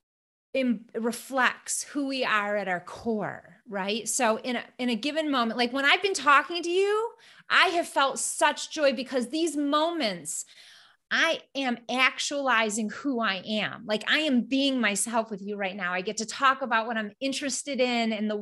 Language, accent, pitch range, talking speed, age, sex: English, American, 220-280 Hz, 185 wpm, 30-49, female